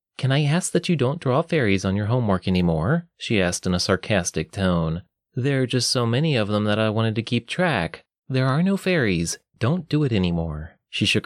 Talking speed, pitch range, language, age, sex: 220 wpm, 90-135 Hz, English, 30-49, male